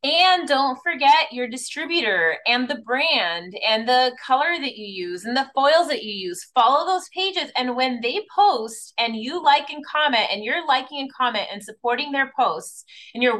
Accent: American